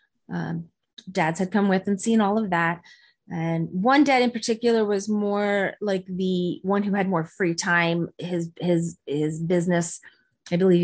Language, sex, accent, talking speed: English, female, American, 170 wpm